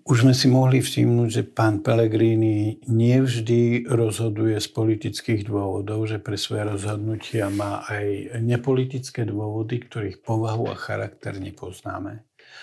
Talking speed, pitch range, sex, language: 125 wpm, 110-125 Hz, male, Slovak